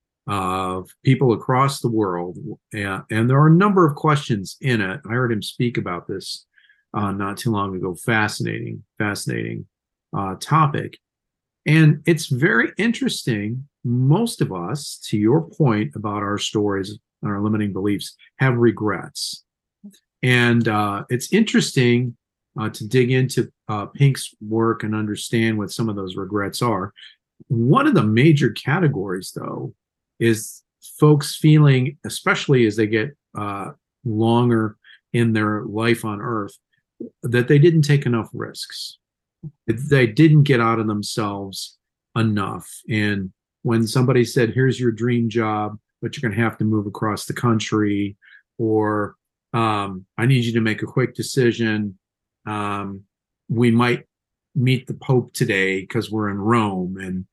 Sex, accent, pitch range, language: male, American, 105-130 Hz, English